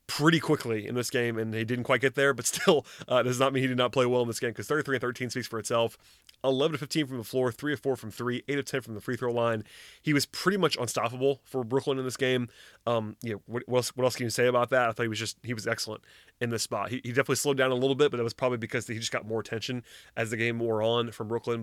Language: English